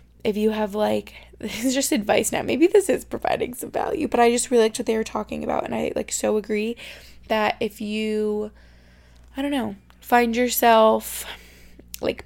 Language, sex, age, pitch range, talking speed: English, female, 20-39, 200-230 Hz, 190 wpm